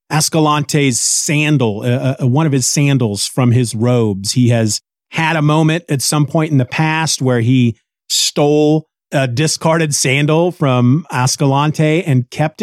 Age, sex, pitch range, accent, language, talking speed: 40-59, male, 125-165 Hz, American, English, 150 wpm